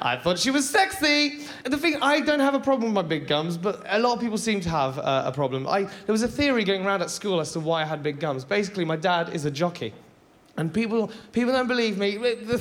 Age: 20-39